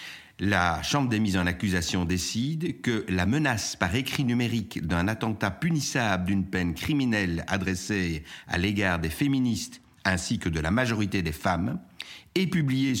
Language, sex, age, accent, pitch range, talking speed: French, male, 60-79, French, 95-120 Hz, 150 wpm